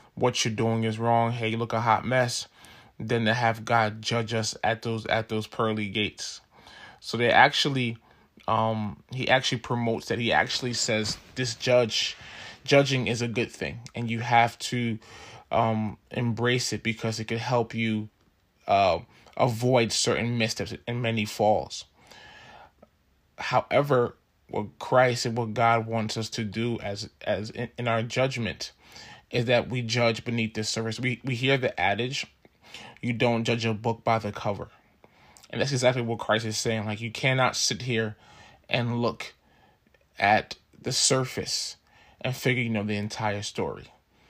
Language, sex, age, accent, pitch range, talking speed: English, male, 20-39, American, 110-120 Hz, 160 wpm